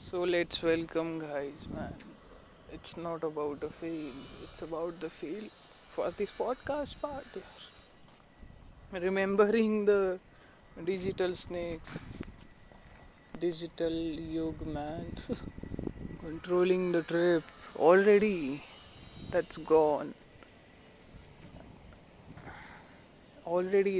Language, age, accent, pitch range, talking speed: Marathi, 20-39, native, 165-190 Hz, 85 wpm